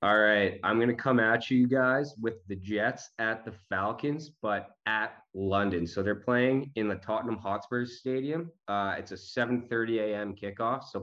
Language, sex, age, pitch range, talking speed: English, male, 20-39, 90-110 Hz, 180 wpm